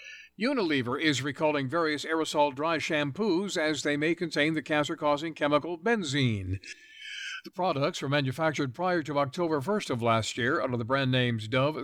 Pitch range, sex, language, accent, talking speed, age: 125-155 Hz, male, English, American, 155 wpm, 60-79